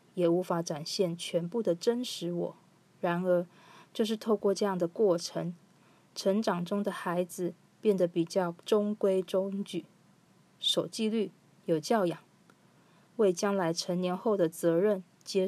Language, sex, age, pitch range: Chinese, female, 20-39, 175-205 Hz